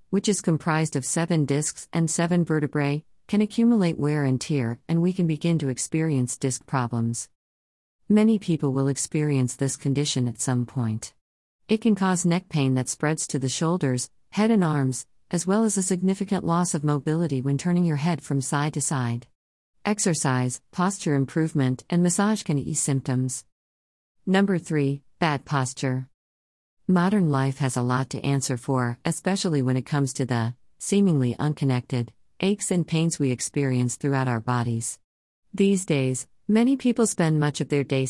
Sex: female